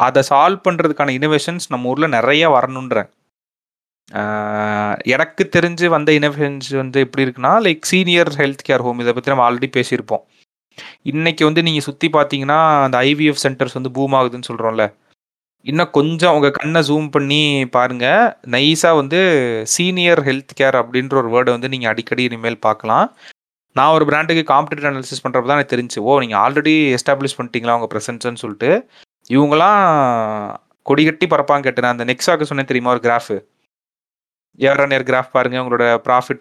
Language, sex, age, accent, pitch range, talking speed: Tamil, male, 30-49, native, 120-150 Hz, 145 wpm